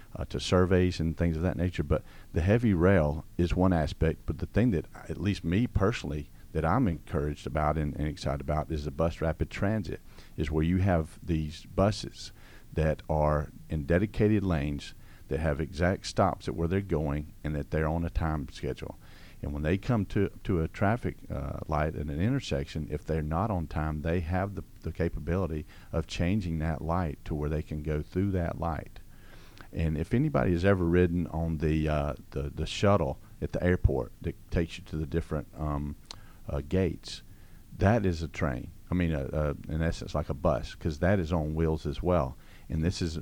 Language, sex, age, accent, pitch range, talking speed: English, male, 50-69, American, 75-95 Hz, 200 wpm